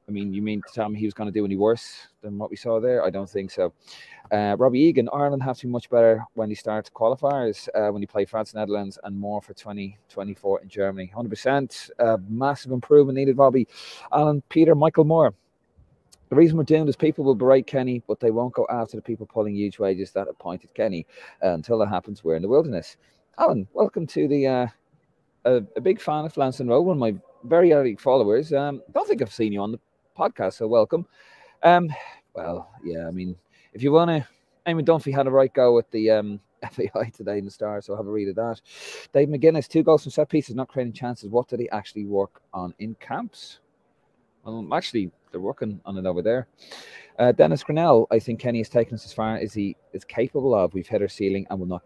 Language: English